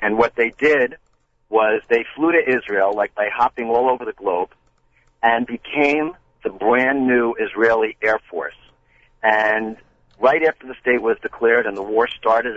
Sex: male